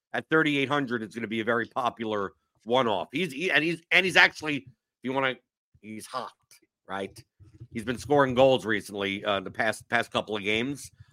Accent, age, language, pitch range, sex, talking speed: American, 50-69, English, 110-145 Hz, male, 195 wpm